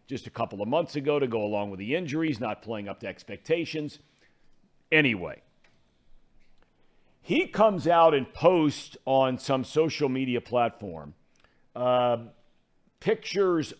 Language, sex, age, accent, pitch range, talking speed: English, male, 50-69, American, 115-155 Hz, 130 wpm